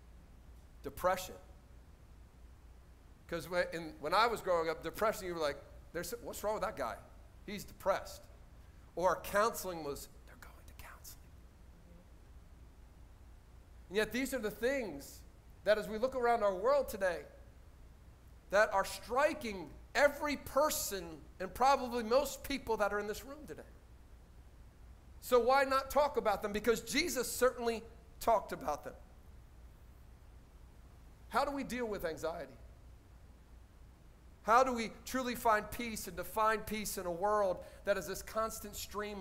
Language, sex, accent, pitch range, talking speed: English, male, American, 165-240 Hz, 135 wpm